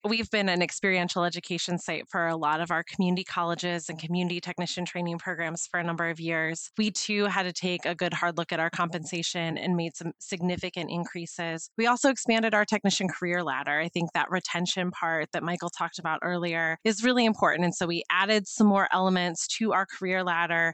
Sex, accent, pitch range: female, American, 175-215 Hz